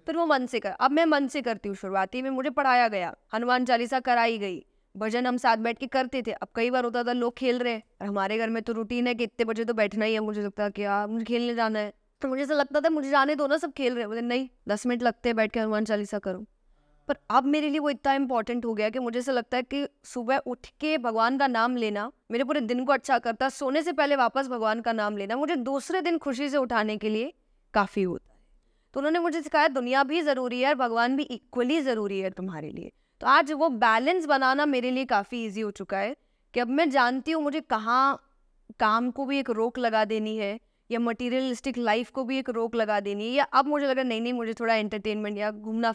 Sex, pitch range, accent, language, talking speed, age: female, 220-275 Hz, native, Hindi, 205 wpm, 20-39